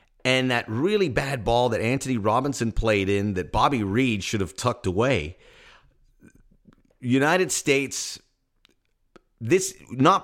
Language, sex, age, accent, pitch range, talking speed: English, male, 30-49, American, 105-155 Hz, 125 wpm